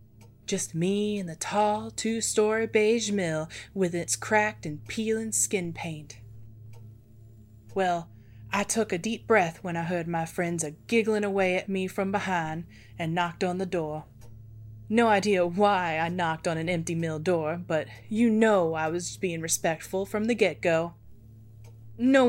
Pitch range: 145-205 Hz